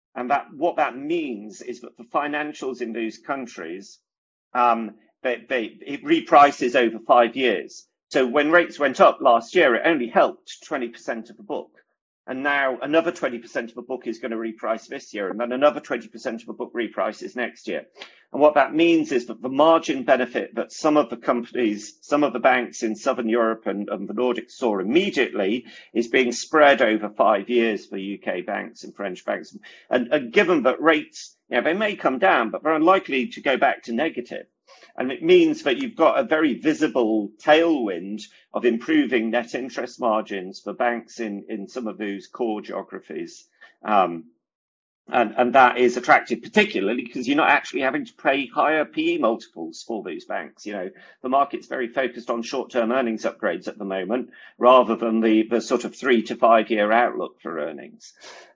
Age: 40-59